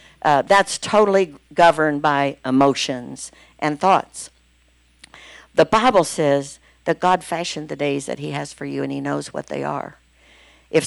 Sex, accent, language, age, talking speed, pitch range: female, American, English, 60-79, 155 wpm, 145-170 Hz